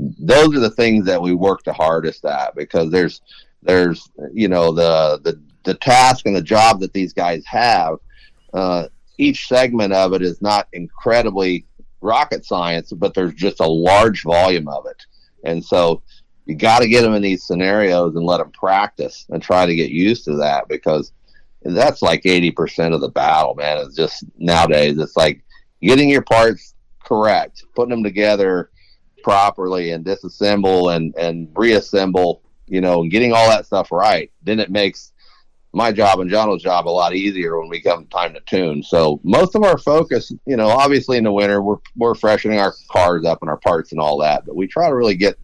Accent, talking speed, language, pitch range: American, 190 wpm, English, 85-105 Hz